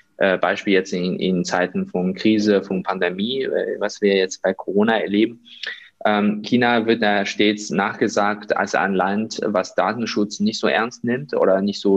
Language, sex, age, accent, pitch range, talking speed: German, male, 20-39, German, 100-115 Hz, 165 wpm